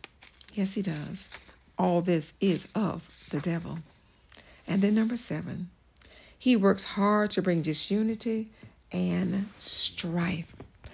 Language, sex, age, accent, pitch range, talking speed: English, female, 60-79, American, 165-225 Hz, 115 wpm